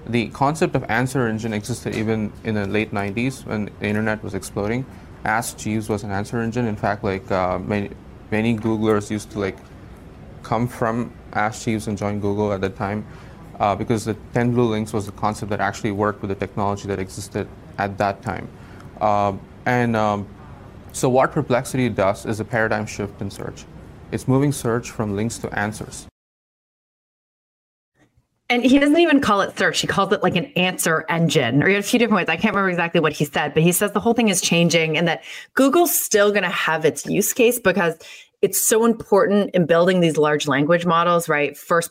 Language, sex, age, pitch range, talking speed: English, male, 20-39, 105-165 Hz, 200 wpm